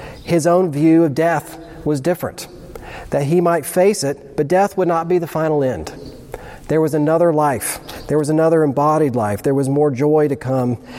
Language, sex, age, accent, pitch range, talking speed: English, male, 40-59, American, 135-160 Hz, 190 wpm